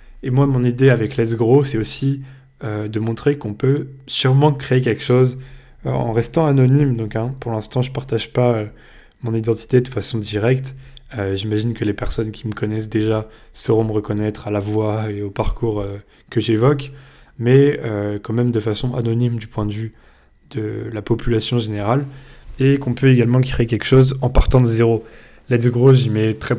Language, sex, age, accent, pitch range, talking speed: French, male, 20-39, French, 110-130 Hz, 195 wpm